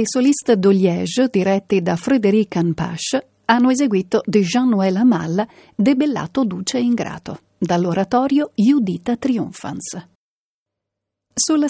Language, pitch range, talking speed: Italian, 185-245 Hz, 95 wpm